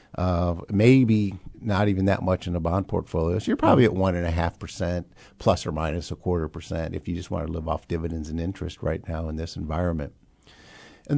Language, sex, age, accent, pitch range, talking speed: English, male, 50-69, American, 85-105 Hz, 220 wpm